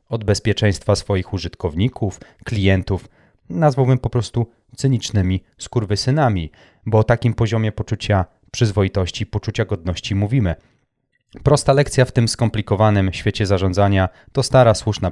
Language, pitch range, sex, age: Polish, 100-130 Hz, male, 30-49